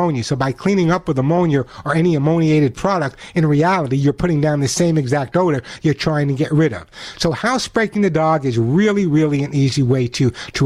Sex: male